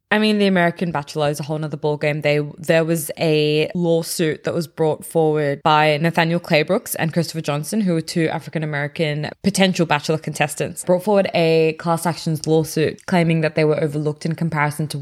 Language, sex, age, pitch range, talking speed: English, female, 20-39, 155-185 Hz, 180 wpm